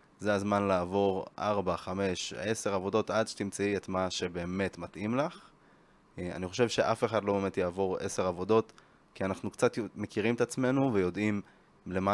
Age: 20-39